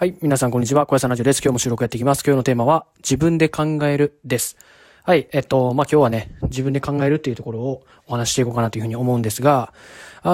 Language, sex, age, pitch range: Japanese, male, 20-39, 115-155 Hz